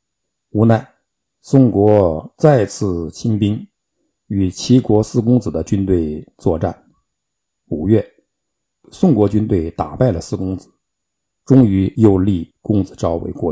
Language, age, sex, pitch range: Chinese, 50-69, male, 95-130 Hz